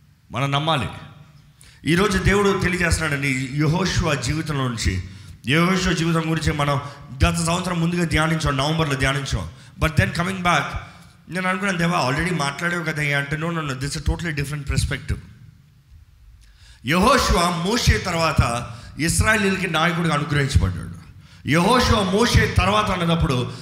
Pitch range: 135-180 Hz